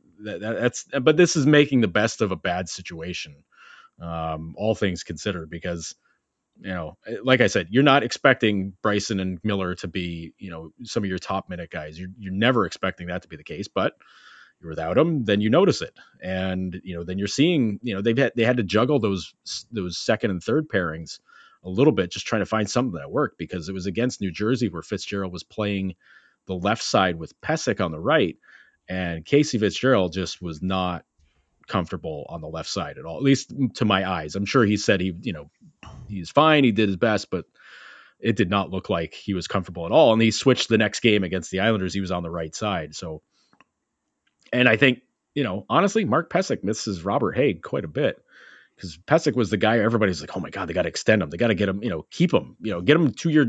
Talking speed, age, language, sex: 230 wpm, 30-49, English, male